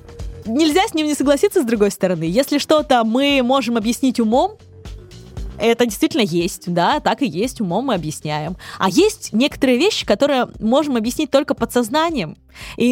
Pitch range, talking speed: 205-280 Hz, 160 wpm